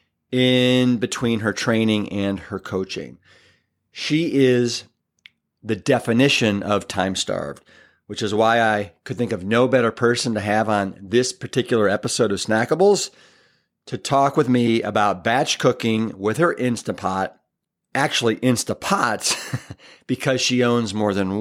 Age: 40-59